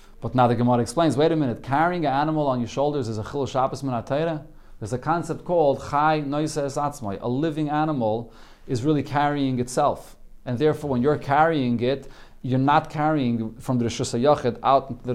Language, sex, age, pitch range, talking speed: English, male, 30-49, 120-155 Hz, 180 wpm